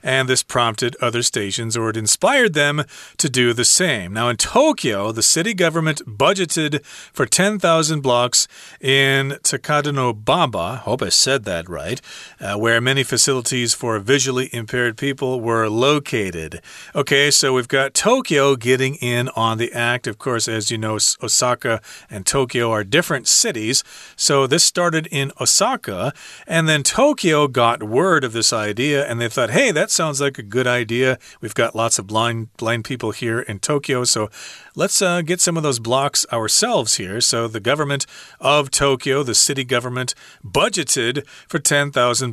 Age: 40-59